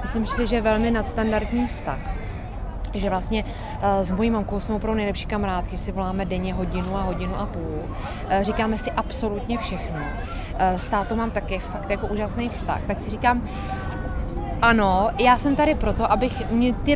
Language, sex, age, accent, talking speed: Czech, female, 30-49, native, 175 wpm